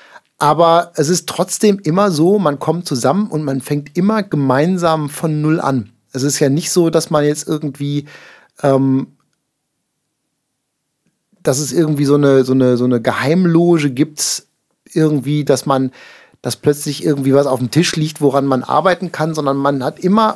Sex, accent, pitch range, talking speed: male, German, 135-165 Hz, 170 wpm